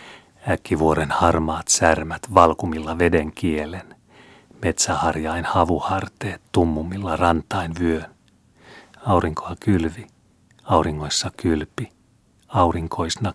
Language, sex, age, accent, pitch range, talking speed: Finnish, male, 40-59, native, 80-95 Hz, 70 wpm